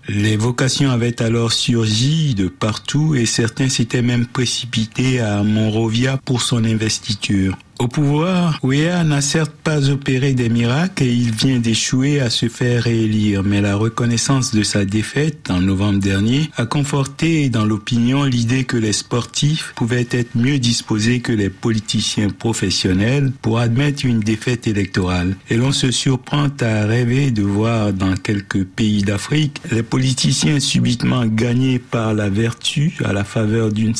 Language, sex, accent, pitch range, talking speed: French, male, French, 110-135 Hz, 155 wpm